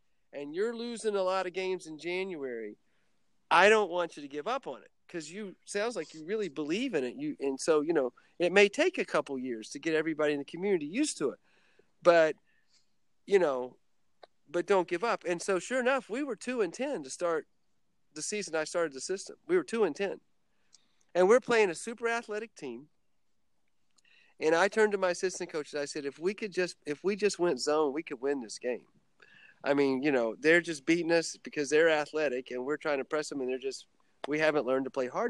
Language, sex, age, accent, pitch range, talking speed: English, male, 40-59, American, 140-200 Hz, 225 wpm